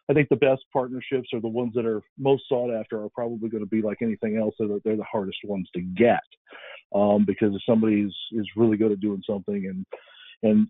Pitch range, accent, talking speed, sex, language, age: 105-120 Hz, American, 225 wpm, male, English, 50-69